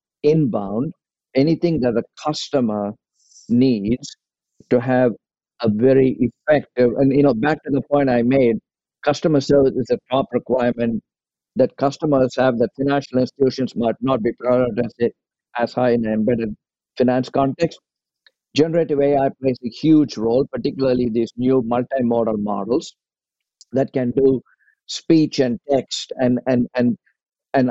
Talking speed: 145 wpm